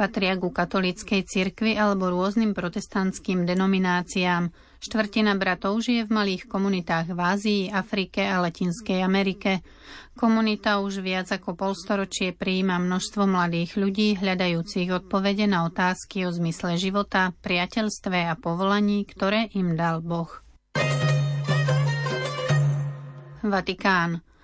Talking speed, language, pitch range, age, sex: 105 wpm, Slovak, 175-200 Hz, 30-49, female